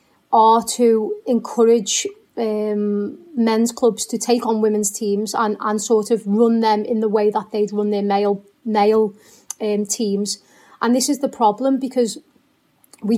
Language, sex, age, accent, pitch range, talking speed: English, female, 30-49, British, 215-240 Hz, 175 wpm